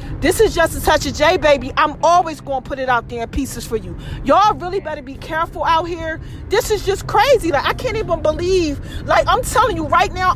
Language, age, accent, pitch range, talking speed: English, 30-49, American, 290-390 Hz, 245 wpm